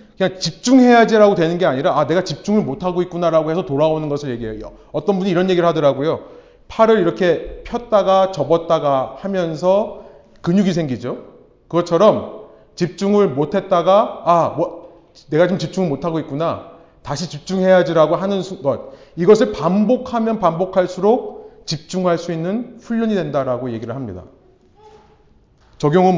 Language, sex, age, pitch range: Korean, male, 30-49, 150-215 Hz